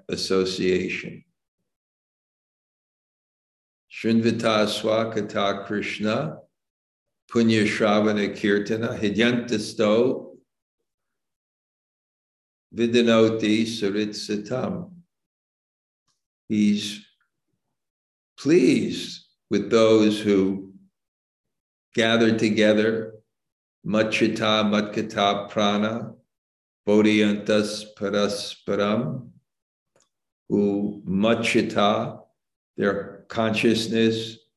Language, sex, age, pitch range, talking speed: English, male, 50-69, 105-115 Hz, 45 wpm